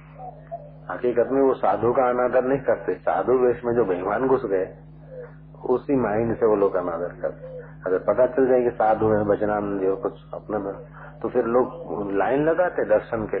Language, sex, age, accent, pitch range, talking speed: Hindi, male, 50-69, native, 115-150 Hz, 185 wpm